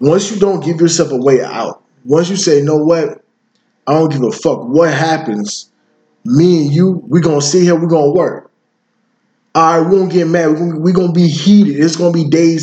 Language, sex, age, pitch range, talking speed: English, male, 20-39, 135-175 Hz, 240 wpm